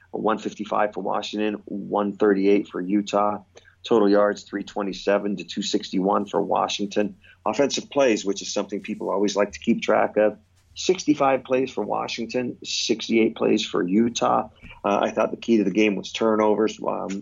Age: 30-49